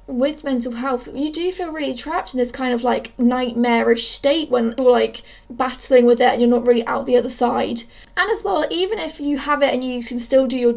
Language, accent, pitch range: English, British, 245-305 Hz